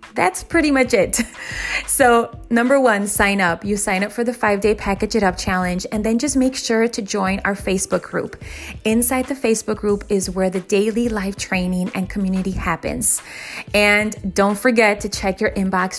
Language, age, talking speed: English, 20-39, 185 wpm